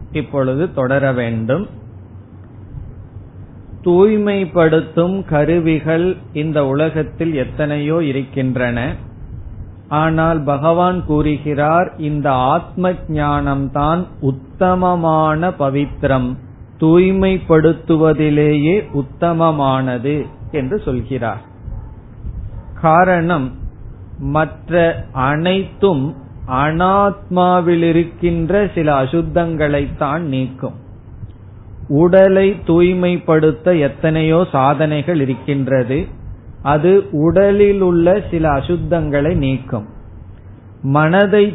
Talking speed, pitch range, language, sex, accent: 60 wpm, 130-170 Hz, Tamil, male, native